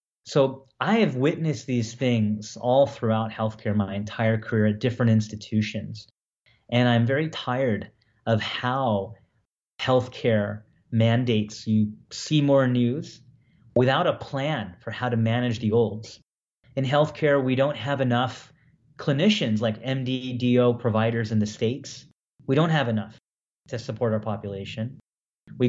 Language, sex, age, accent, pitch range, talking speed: English, male, 30-49, American, 110-140 Hz, 140 wpm